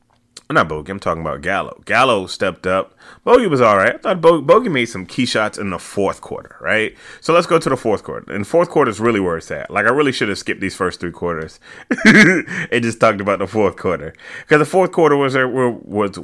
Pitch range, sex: 95-120 Hz, male